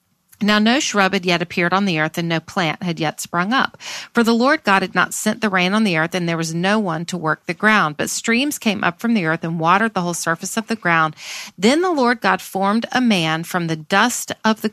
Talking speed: 260 wpm